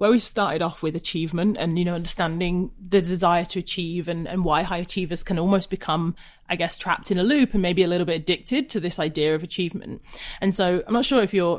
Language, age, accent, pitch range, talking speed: English, 30-49, British, 165-200 Hz, 240 wpm